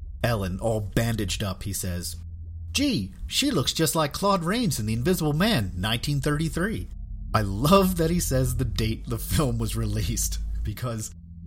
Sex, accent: male, American